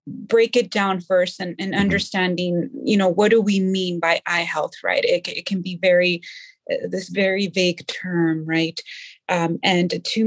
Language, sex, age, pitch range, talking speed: English, female, 30-49, 180-215 Hz, 180 wpm